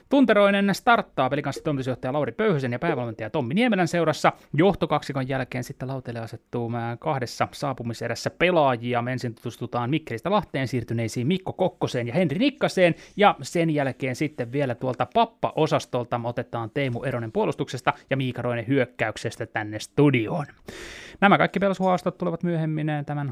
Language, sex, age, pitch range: Finnish, male, 30-49, 120-165 Hz